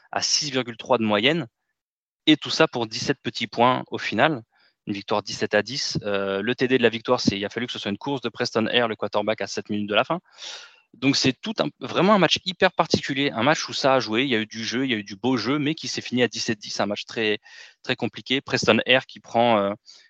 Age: 20-39